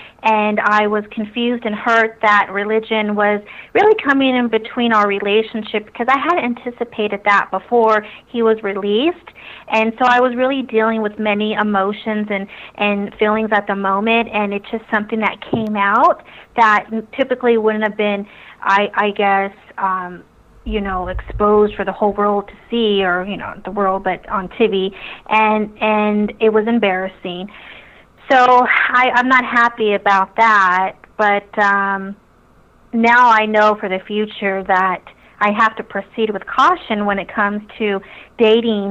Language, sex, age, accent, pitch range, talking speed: English, female, 30-49, American, 195-220 Hz, 160 wpm